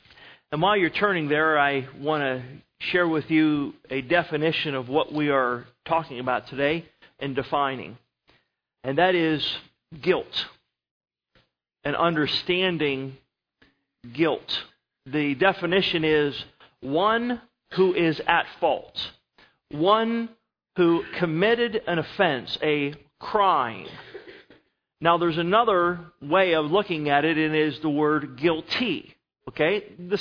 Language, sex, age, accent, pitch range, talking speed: English, male, 40-59, American, 140-185 Hz, 120 wpm